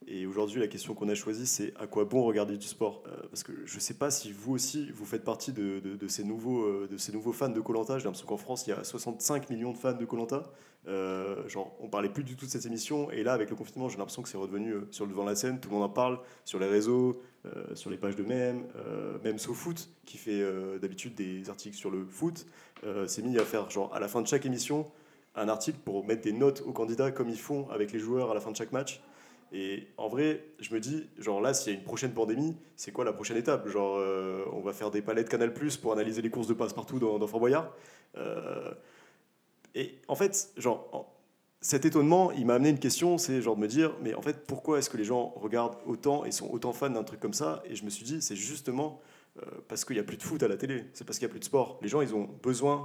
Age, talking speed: 30-49, 275 wpm